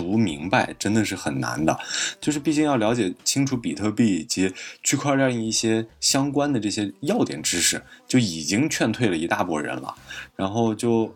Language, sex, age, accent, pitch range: Chinese, male, 20-39, native, 90-115 Hz